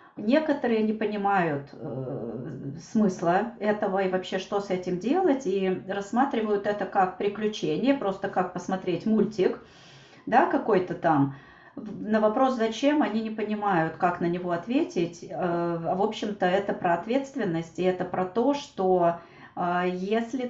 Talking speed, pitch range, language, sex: 140 wpm, 175-215 Hz, Russian, female